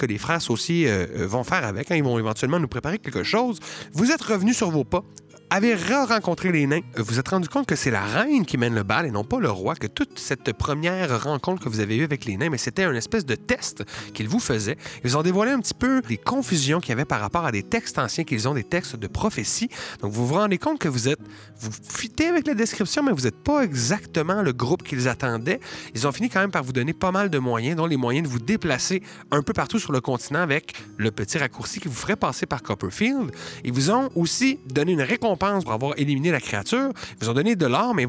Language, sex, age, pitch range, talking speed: French, male, 30-49, 115-195 Hz, 260 wpm